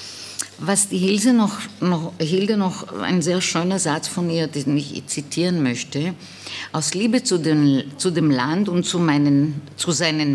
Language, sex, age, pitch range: German, female, 50-69, 145-195 Hz